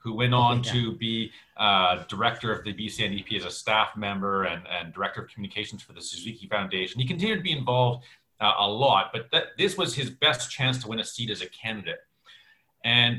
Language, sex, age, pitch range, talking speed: English, male, 40-59, 110-145 Hz, 215 wpm